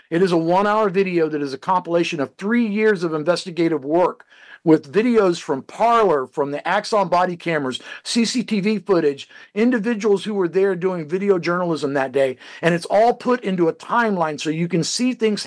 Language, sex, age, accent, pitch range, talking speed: English, male, 50-69, American, 165-220 Hz, 180 wpm